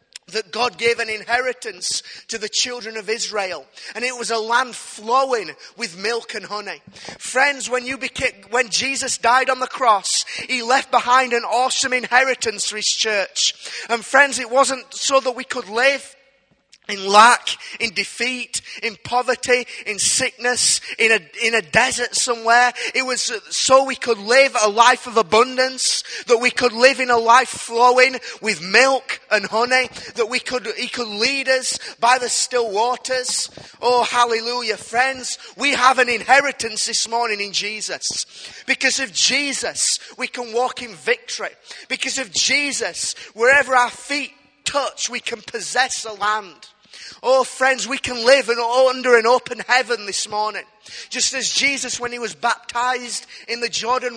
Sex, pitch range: male, 225-255 Hz